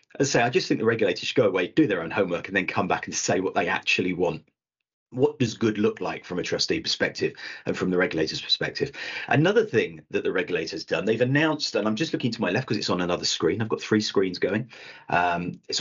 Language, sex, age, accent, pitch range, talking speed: English, male, 40-59, British, 95-135 Hz, 245 wpm